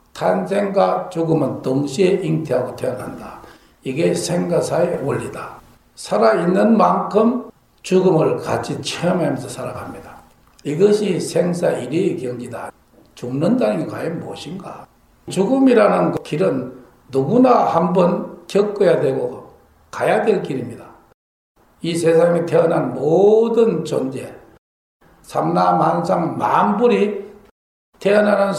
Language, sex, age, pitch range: Korean, male, 60-79, 160-220 Hz